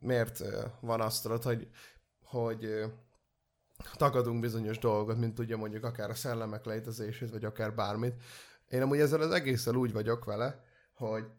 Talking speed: 140 wpm